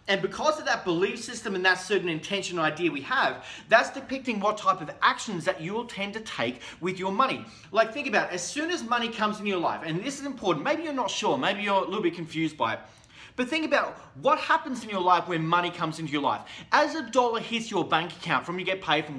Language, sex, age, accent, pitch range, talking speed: English, male, 30-49, Australian, 165-225 Hz, 255 wpm